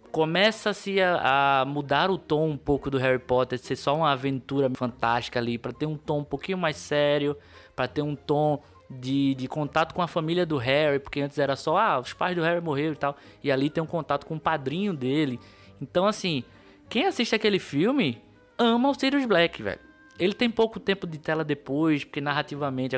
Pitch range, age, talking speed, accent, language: 130-175 Hz, 20-39, 205 wpm, Brazilian, Portuguese